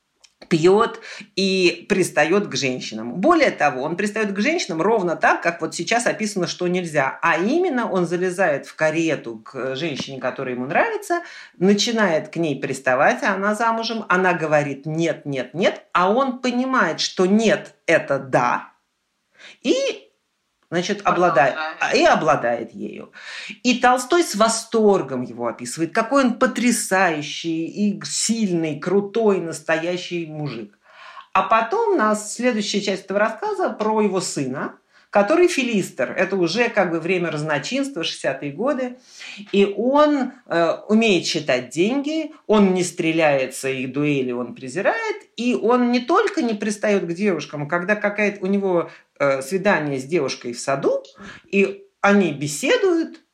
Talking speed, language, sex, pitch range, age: 140 wpm, Russian, male, 160-230 Hz, 50-69